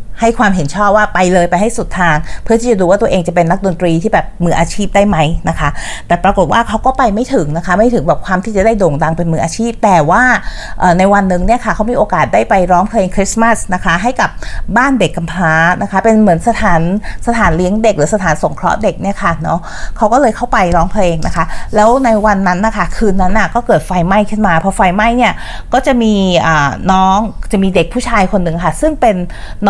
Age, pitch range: 30-49, 170-220 Hz